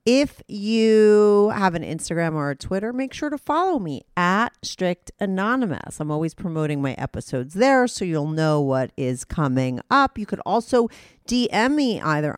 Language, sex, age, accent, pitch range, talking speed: English, female, 40-59, American, 145-230 Hz, 170 wpm